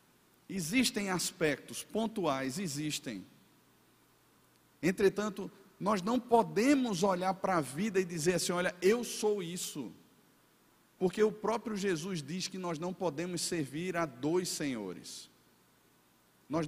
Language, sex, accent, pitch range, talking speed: Portuguese, male, Brazilian, 180-220 Hz, 120 wpm